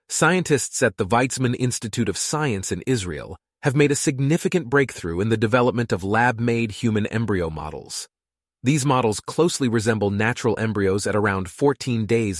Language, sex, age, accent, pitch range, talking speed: English, male, 30-49, American, 95-125 Hz, 155 wpm